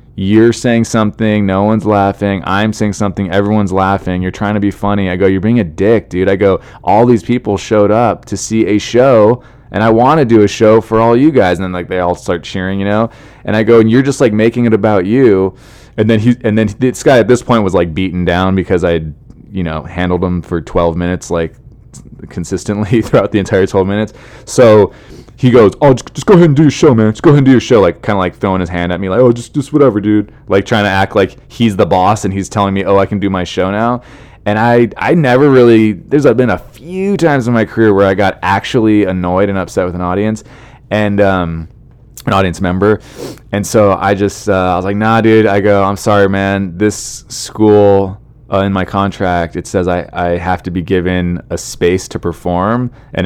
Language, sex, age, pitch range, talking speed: English, male, 20-39, 95-115 Hz, 235 wpm